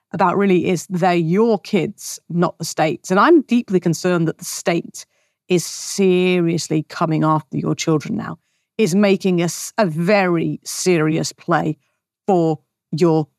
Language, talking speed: English, 145 wpm